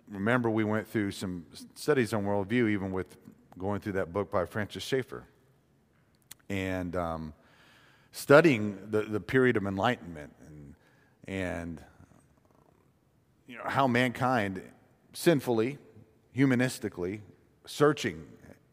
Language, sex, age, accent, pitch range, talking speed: English, male, 40-59, American, 95-130 Hz, 110 wpm